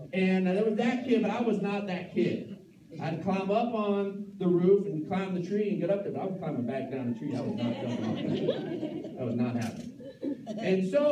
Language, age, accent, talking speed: English, 50-69, American, 245 wpm